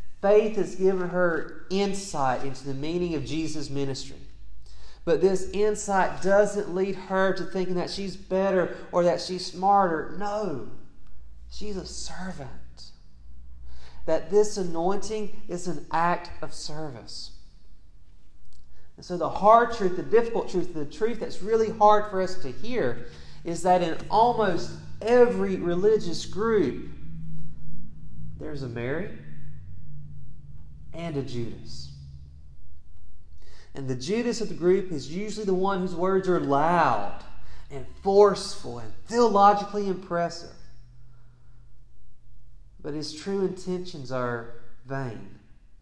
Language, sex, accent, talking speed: English, male, American, 120 wpm